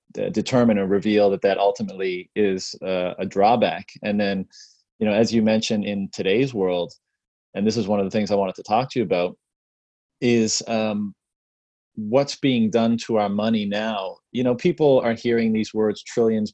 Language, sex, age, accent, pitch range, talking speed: English, male, 30-49, American, 100-115 Hz, 185 wpm